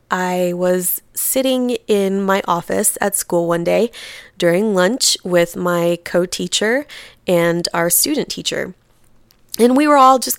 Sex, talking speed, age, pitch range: female, 140 wpm, 20-39, 175-215 Hz